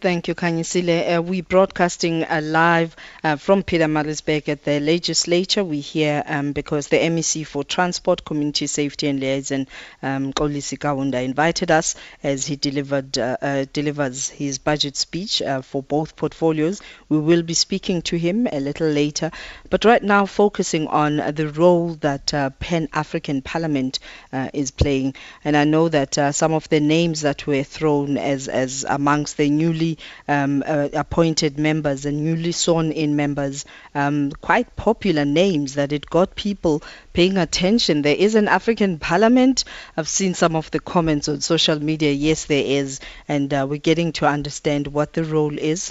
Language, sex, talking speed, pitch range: English, female, 170 wpm, 145-170 Hz